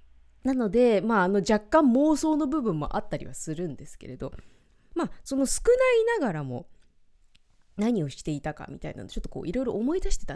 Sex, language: female, Japanese